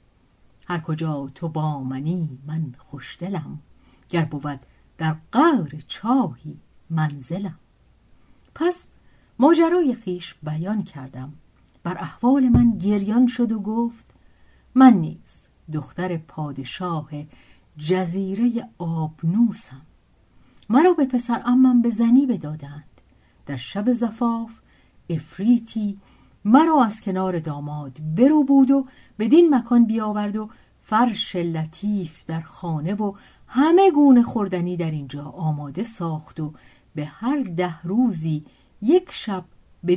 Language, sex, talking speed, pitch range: Persian, female, 110 wpm, 155-235 Hz